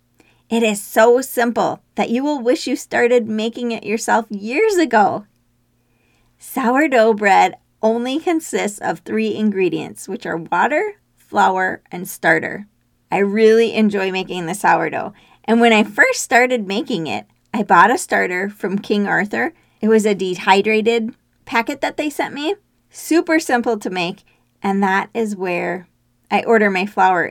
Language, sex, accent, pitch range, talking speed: English, female, American, 185-235 Hz, 150 wpm